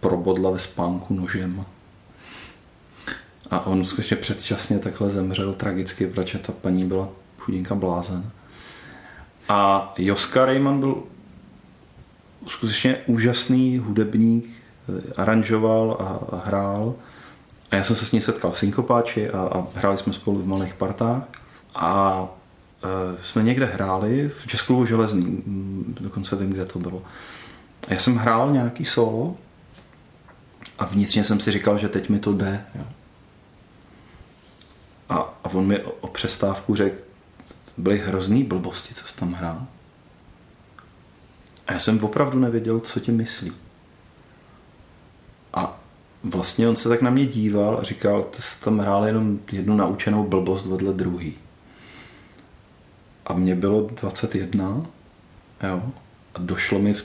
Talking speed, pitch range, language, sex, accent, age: 130 wpm, 95-110 Hz, Czech, male, native, 30-49